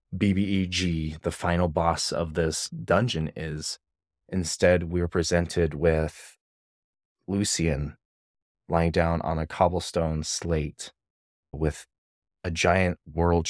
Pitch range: 80-95 Hz